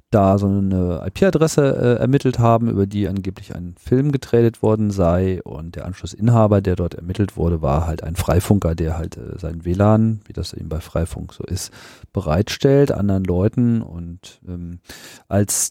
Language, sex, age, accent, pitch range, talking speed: German, male, 40-59, German, 90-115 Hz, 165 wpm